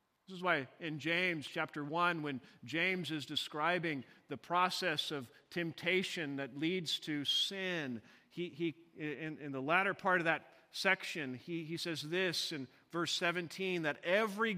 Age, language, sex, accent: 50-69, English, male, American